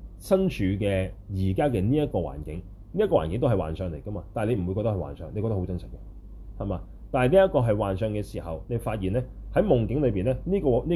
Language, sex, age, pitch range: Chinese, male, 30-49, 95-120 Hz